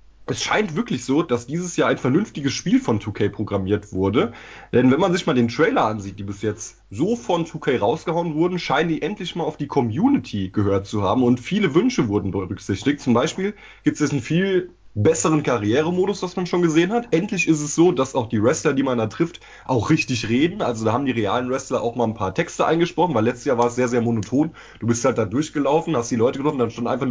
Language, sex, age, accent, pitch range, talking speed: German, male, 20-39, German, 115-165 Hz, 235 wpm